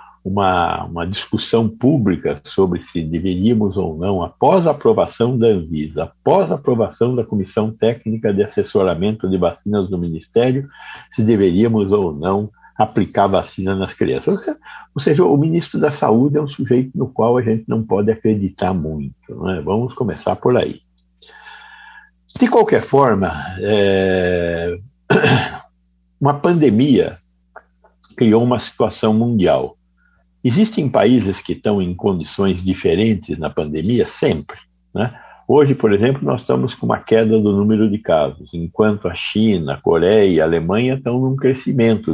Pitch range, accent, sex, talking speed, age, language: 85-125 Hz, Brazilian, male, 140 wpm, 60-79, Portuguese